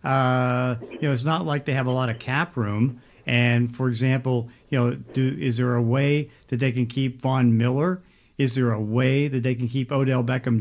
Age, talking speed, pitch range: 50-69, 220 wpm, 120-135 Hz